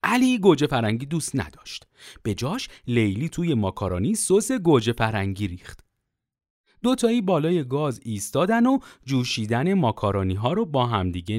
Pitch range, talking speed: 130-215 Hz, 130 wpm